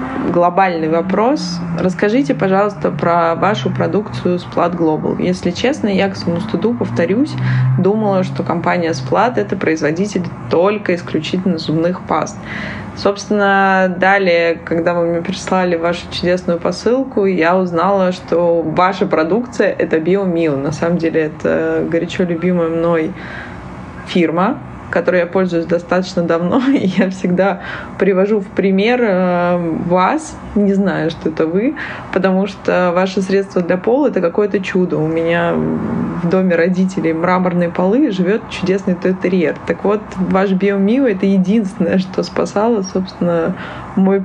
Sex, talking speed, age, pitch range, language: female, 130 wpm, 20-39, 170-200 Hz, Russian